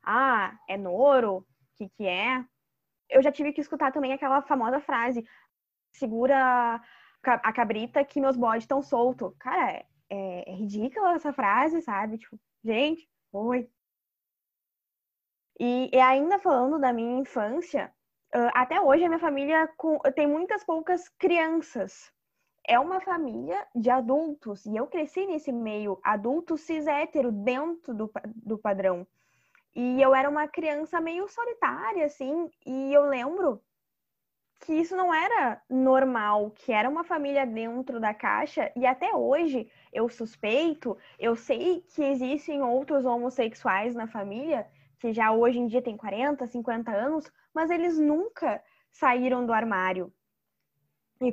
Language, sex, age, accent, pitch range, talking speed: Portuguese, female, 10-29, Brazilian, 230-305 Hz, 140 wpm